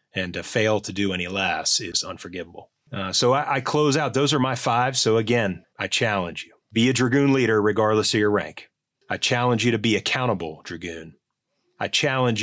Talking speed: 200 wpm